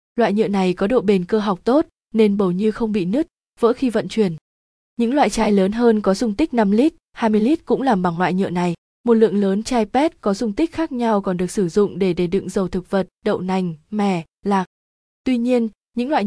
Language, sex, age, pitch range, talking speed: Vietnamese, female, 20-39, 190-235 Hz, 240 wpm